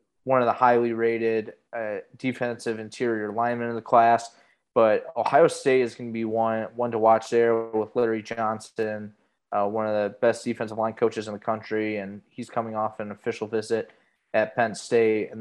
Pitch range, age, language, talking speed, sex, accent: 110-120 Hz, 20-39, English, 190 wpm, male, American